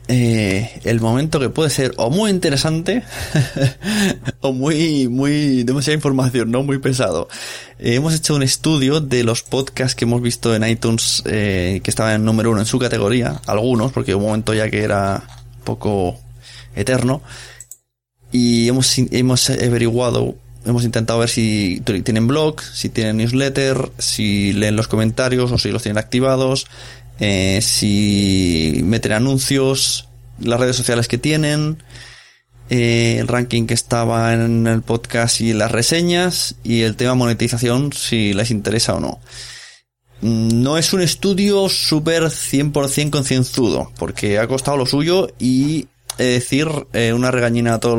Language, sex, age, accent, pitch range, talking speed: Spanish, male, 20-39, Spanish, 115-135 Hz, 150 wpm